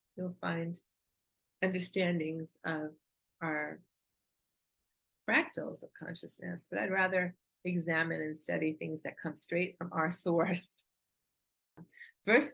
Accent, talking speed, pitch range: American, 105 wpm, 160-185 Hz